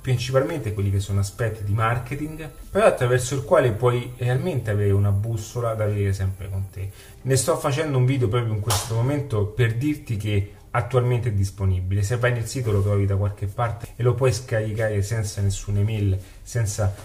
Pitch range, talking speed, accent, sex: 100-120 Hz, 185 wpm, native, male